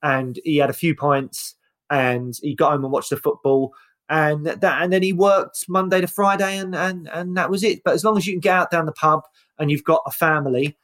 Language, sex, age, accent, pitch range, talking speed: English, male, 20-39, British, 130-155 Hz, 250 wpm